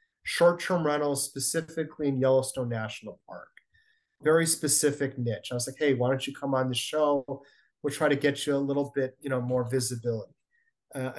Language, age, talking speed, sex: English, 30-49, 180 wpm, male